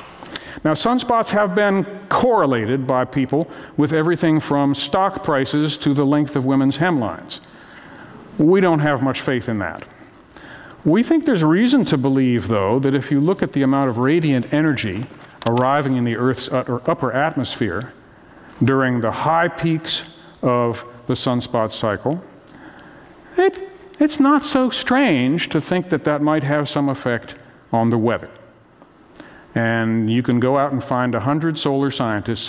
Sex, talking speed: male, 150 wpm